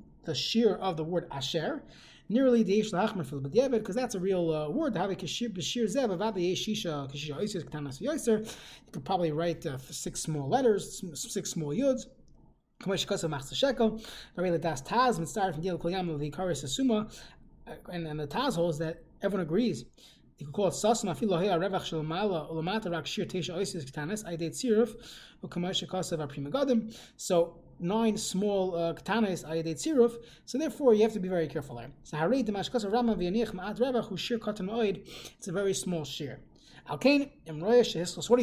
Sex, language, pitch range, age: male, English, 165-225 Hz, 20-39